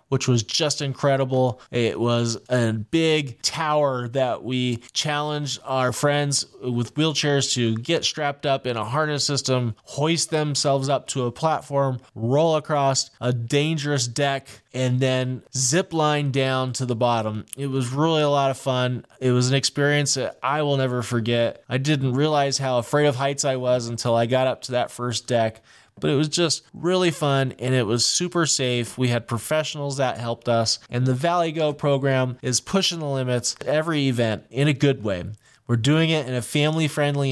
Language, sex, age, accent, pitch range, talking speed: English, male, 20-39, American, 125-145 Hz, 185 wpm